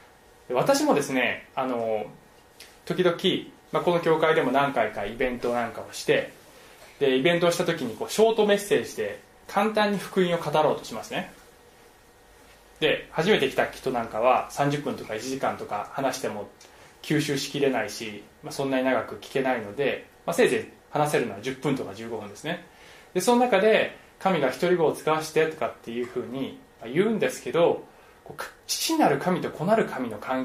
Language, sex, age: Japanese, male, 20-39